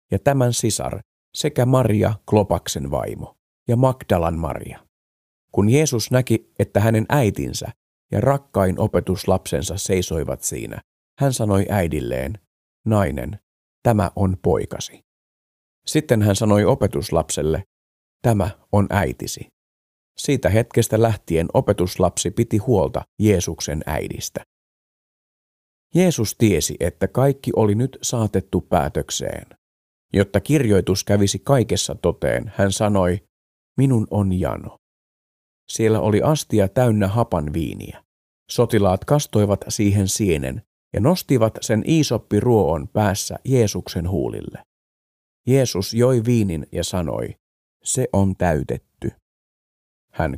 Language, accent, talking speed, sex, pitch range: Finnish, native, 105 wpm, male, 90-115 Hz